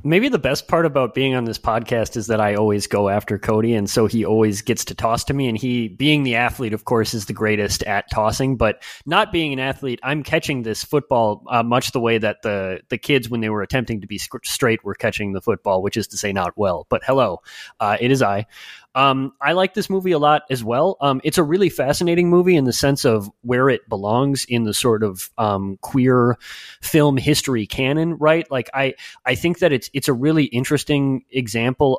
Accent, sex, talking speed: American, male, 225 wpm